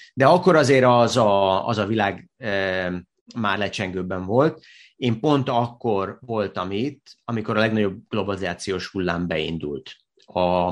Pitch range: 95-125 Hz